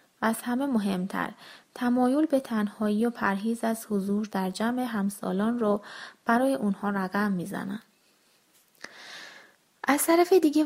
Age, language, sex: 20-39, Persian, female